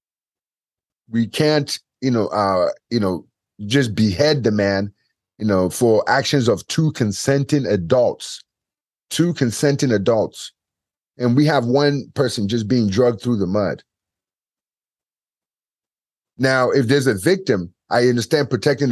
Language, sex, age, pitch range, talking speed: English, male, 30-49, 110-160 Hz, 130 wpm